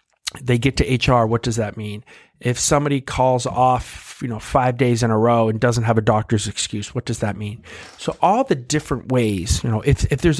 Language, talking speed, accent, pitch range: English, 225 wpm, American, 110-130 Hz